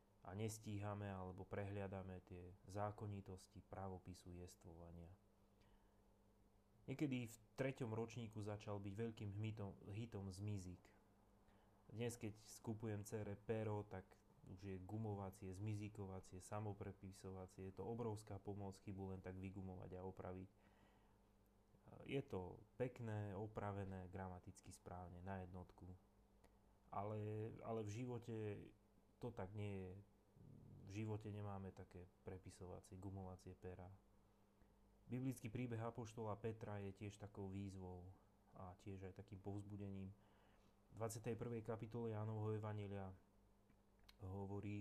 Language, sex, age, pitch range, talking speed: Slovak, male, 30-49, 95-105 Hz, 105 wpm